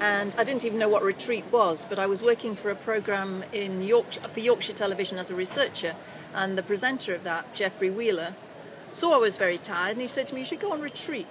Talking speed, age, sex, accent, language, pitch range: 230 wpm, 50-69, female, British, English, 195-250 Hz